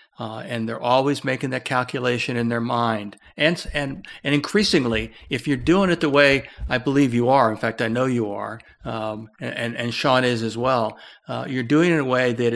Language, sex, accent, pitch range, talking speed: English, male, American, 120-145 Hz, 215 wpm